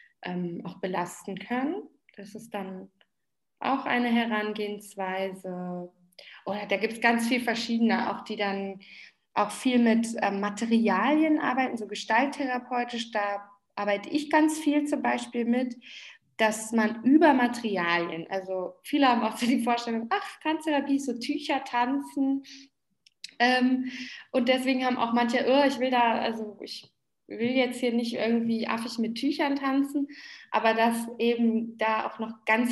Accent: German